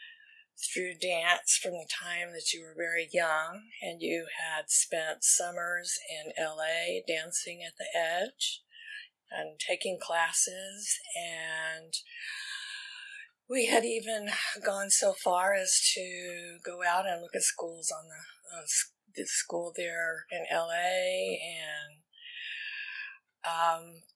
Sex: female